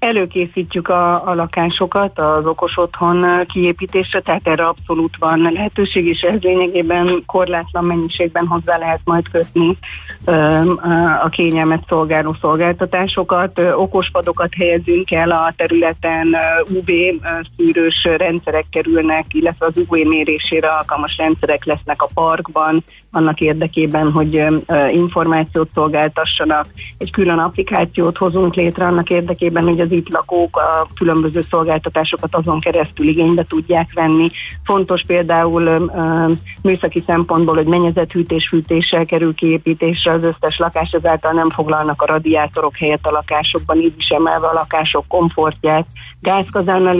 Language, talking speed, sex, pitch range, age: Hungarian, 125 wpm, female, 160-175 Hz, 30-49